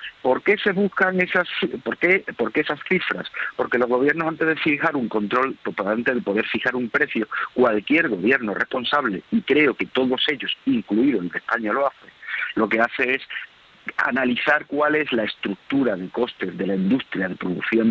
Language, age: Spanish, 50-69